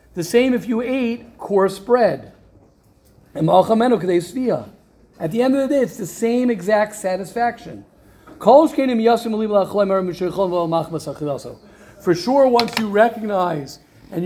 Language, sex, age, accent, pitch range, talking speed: English, male, 50-69, American, 170-225 Hz, 100 wpm